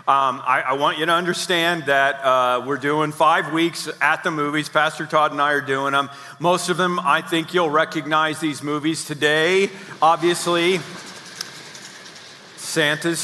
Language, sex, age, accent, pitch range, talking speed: English, male, 40-59, American, 145-180 Hz, 160 wpm